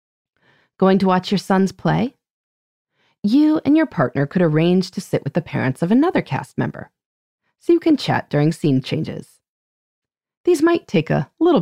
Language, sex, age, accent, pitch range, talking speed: English, female, 30-49, American, 150-245 Hz, 170 wpm